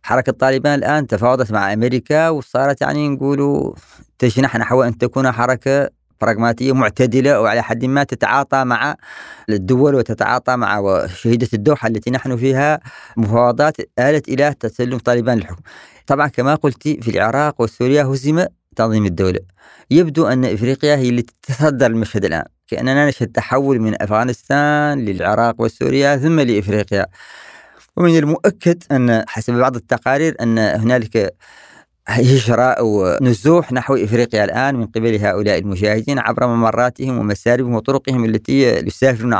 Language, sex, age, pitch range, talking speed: Arabic, female, 30-49, 110-135 Hz, 130 wpm